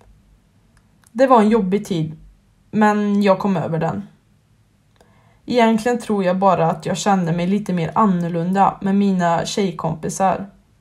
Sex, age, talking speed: female, 20-39, 135 wpm